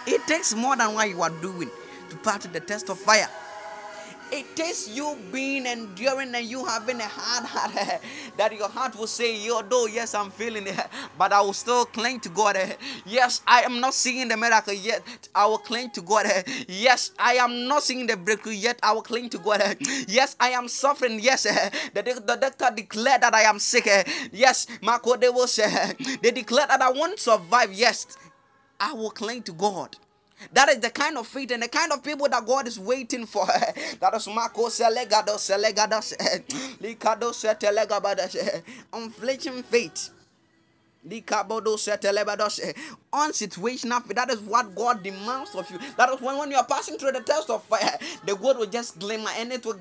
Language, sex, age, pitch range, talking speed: English, male, 20-39, 210-255 Hz, 180 wpm